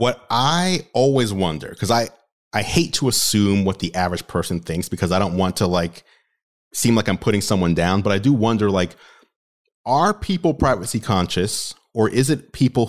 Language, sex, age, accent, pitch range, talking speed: English, male, 30-49, American, 95-125 Hz, 185 wpm